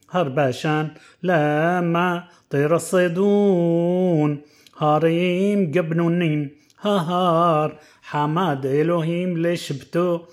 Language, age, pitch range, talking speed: Hebrew, 30-49, 150-180 Hz, 65 wpm